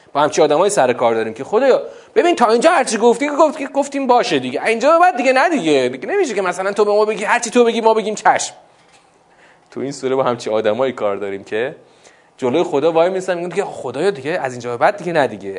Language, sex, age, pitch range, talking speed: Persian, male, 30-49, 120-195 Hz, 220 wpm